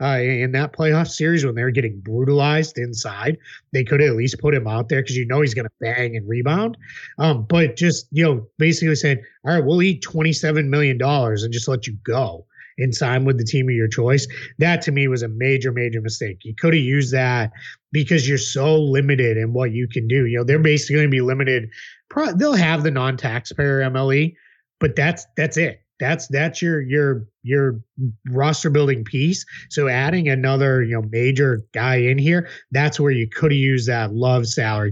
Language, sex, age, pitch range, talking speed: English, male, 30-49, 120-150 Hz, 200 wpm